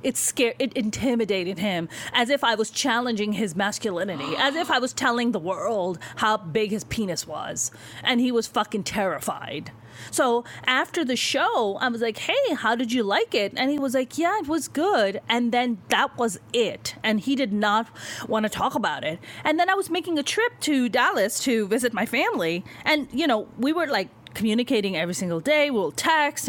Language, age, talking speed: English, 30-49, 200 wpm